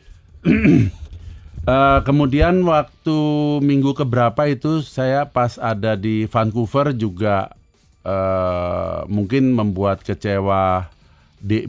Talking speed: 85 wpm